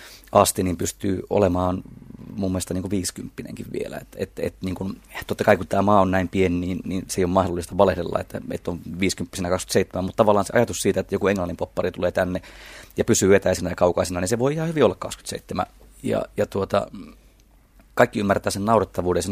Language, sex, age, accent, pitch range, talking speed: Finnish, male, 30-49, native, 90-105 Hz, 200 wpm